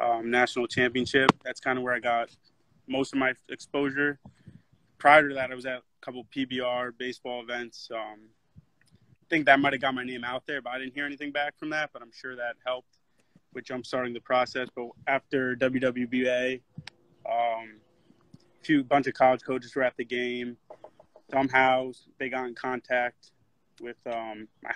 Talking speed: 180 wpm